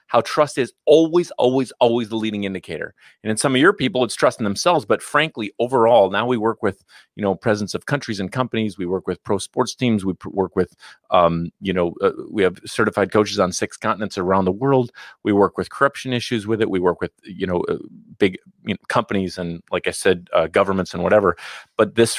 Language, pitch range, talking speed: English, 100-155 Hz, 225 wpm